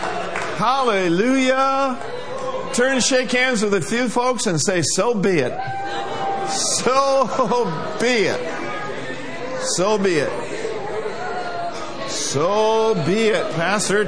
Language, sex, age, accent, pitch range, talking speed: English, male, 50-69, American, 145-195 Hz, 100 wpm